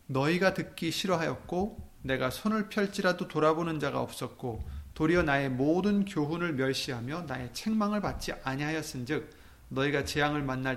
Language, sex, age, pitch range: Korean, male, 30-49, 125-180 Hz